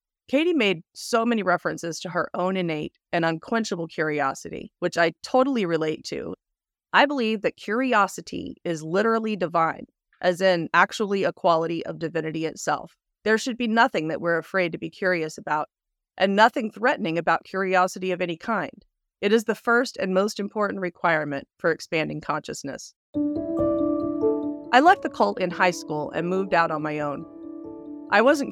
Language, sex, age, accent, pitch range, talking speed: English, female, 30-49, American, 165-230 Hz, 160 wpm